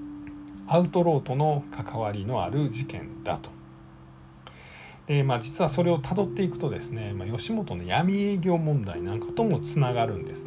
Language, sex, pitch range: Japanese, male, 100-155 Hz